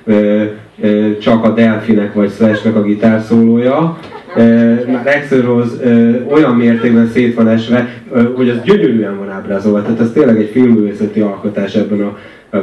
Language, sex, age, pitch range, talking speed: Hungarian, male, 30-49, 110-125 Hz, 145 wpm